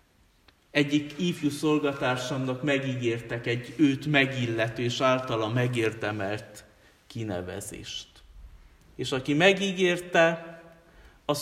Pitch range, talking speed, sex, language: 120-160 Hz, 80 wpm, male, Hungarian